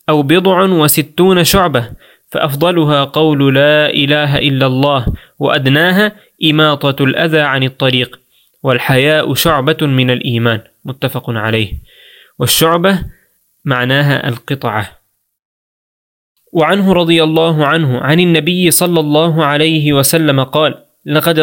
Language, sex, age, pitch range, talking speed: Spanish, male, 20-39, 135-165 Hz, 100 wpm